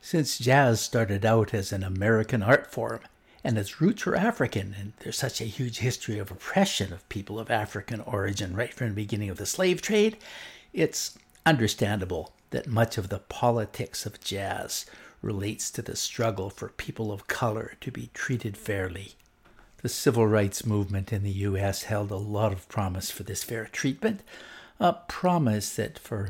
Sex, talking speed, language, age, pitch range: male, 175 wpm, English, 60-79, 100-120 Hz